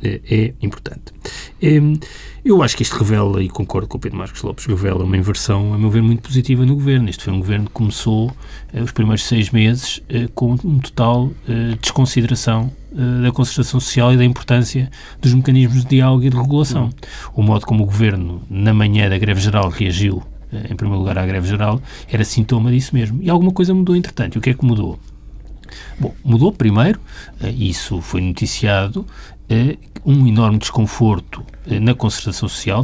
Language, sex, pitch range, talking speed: Portuguese, male, 105-130 Hz, 175 wpm